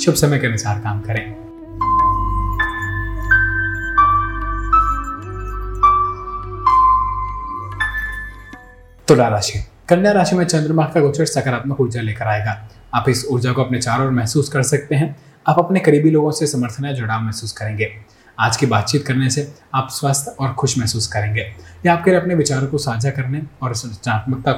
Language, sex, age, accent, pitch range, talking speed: Hindi, male, 20-39, native, 110-155 Hz, 140 wpm